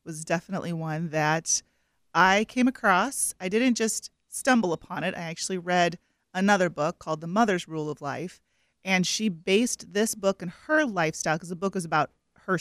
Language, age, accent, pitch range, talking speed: English, 30-49, American, 170-215 Hz, 180 wpm